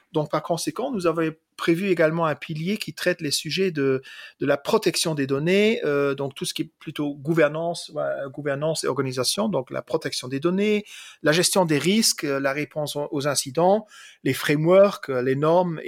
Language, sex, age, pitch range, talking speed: English, male, 40-59, 145-190 Hz, 180 wpm